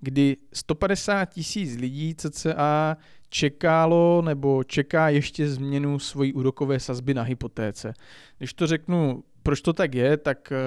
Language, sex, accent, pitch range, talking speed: Czech, male, native, 125-145 Hz, 130 wpm